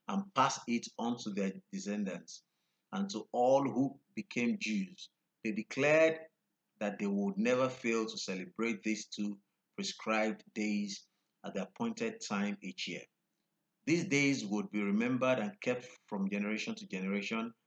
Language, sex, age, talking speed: English, male, 50-69, 145 wpm